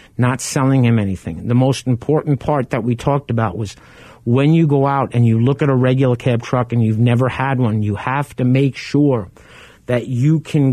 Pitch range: 120-135 Hz